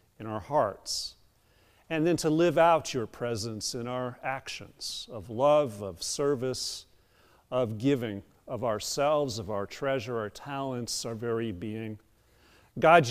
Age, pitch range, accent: 40-59, 110-150 Hz, American